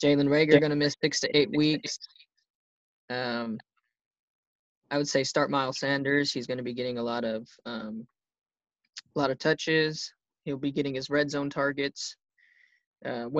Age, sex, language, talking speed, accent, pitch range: 20-39, male, English, 155 wpm, American, 130-155 Hz